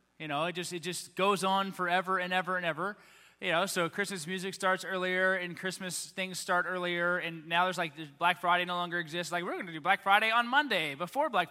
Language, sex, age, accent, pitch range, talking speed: English, male, 20-39, American, 175-210 Hz, 240 wpm